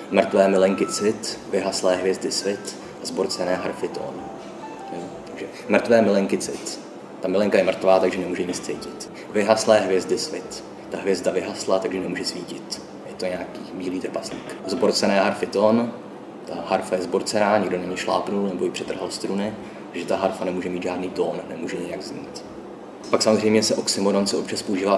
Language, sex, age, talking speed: Czech, male, 20-39, 160 wpm